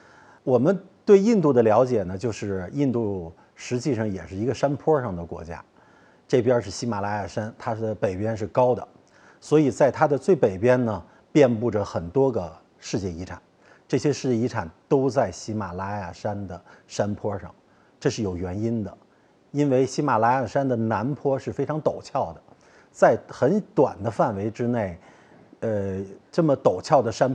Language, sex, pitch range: Chinese, male, 100-130 Hz